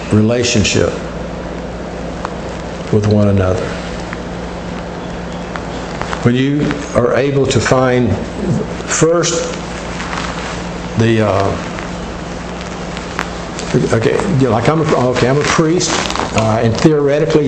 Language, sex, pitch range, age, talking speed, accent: English, male, 110-140 Hz, 60-79, 90 wpm, American